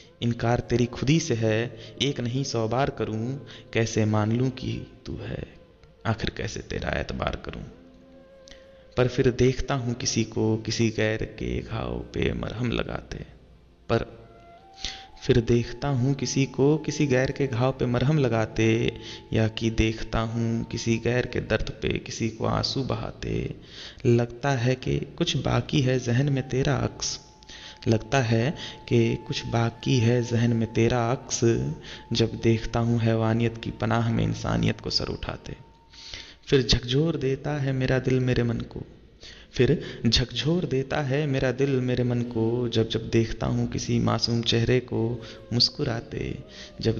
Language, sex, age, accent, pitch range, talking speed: Hindi, male, 30-49, native, 115-130 Hz, 150 wpm